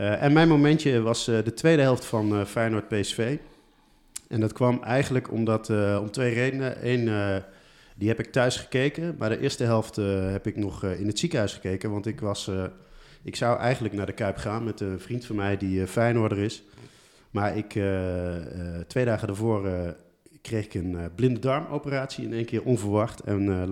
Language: Dutch